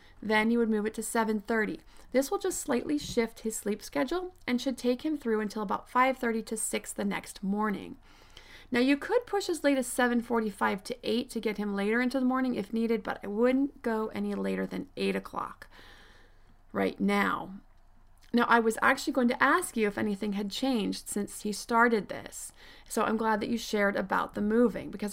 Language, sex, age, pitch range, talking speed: English, female, 30-49, 210-255 Hz, 200 wpm